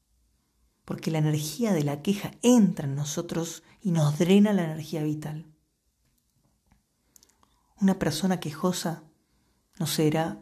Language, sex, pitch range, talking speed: Spanish, female, 140-175 Hz, 115 wpm